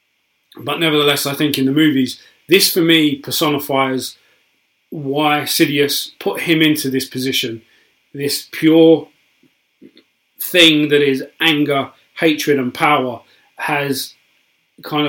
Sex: male